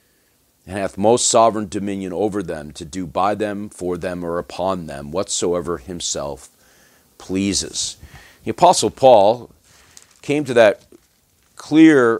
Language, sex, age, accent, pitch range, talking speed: English, male, 50-69, American, 85-110 Hz, 130 wpm